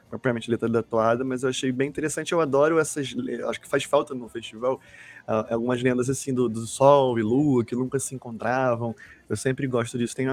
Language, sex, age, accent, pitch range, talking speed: Portuguese, male, 20-39, Brazilian, 110-130 Hz, 205 wpm